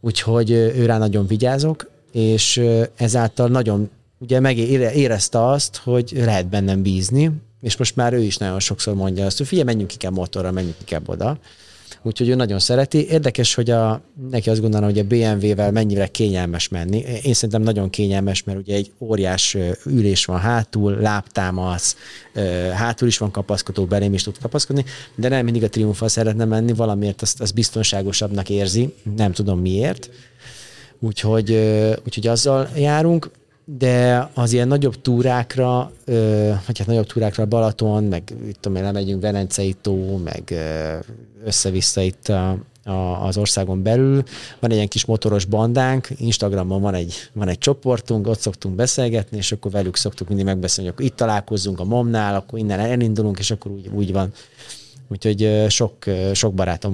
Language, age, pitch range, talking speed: Hungarian, 30-49, 100-120 Hz, 160 wpm